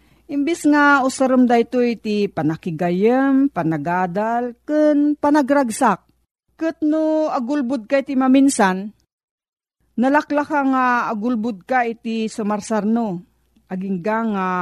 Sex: female